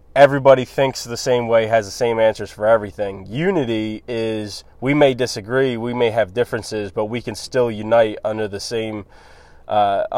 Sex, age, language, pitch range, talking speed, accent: male, 20-39, English, 110-135 Hz, 170 wpm, American